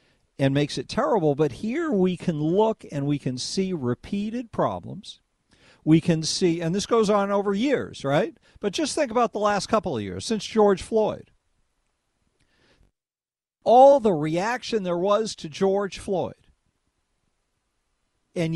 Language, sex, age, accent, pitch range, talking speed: English, male, 50-69, American, 175-220 Hz, 150 wpm